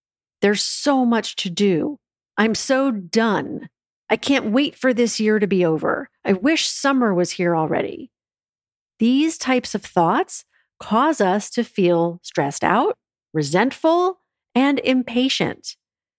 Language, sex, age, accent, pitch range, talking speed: English, female, 40-59, American, 190-270 Hz, 135 wpm